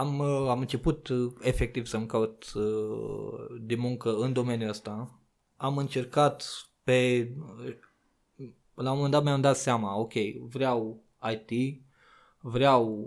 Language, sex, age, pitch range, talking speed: Romanian, male, 20-39, 110-140 Hz, 115 wpm